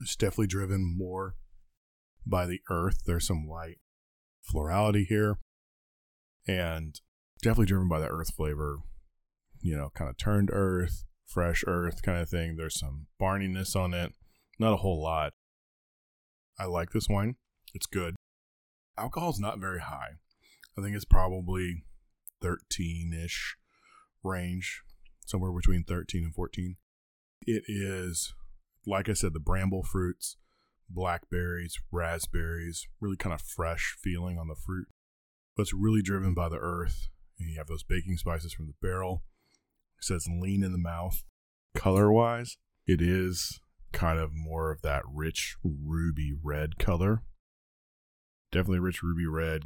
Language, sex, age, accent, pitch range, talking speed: English, male, 20-39, American, 80-95 Hz, 140 wpm